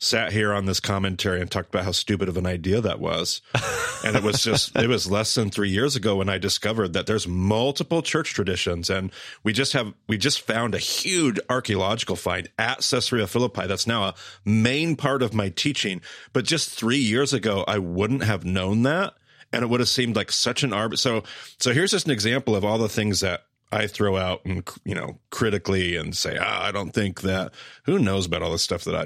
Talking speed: 220 wpm